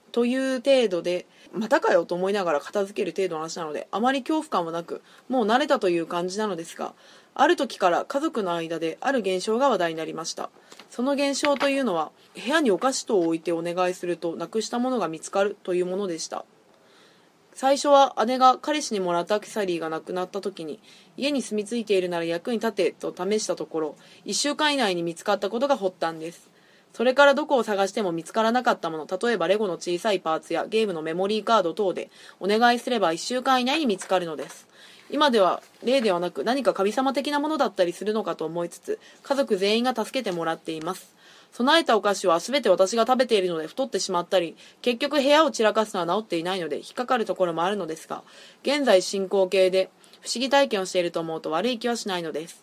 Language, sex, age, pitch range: Japanese, female, 20-39, 175-255 Hz